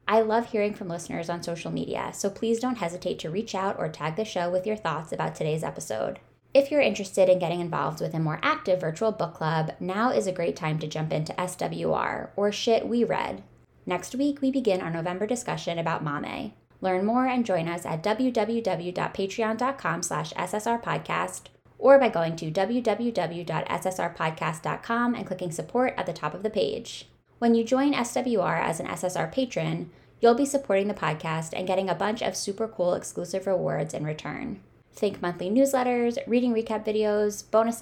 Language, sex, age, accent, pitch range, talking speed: English, female, 10-29, American, 170-225 Hz, 180 wpm